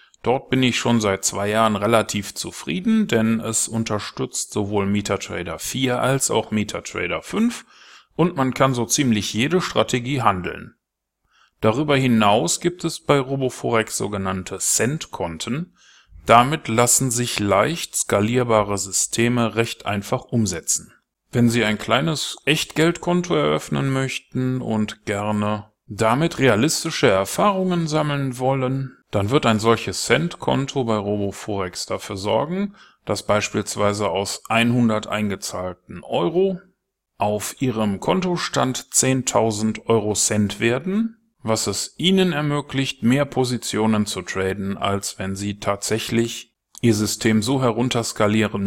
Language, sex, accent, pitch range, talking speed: German, male, German, 105-135 Hz, 120 wpm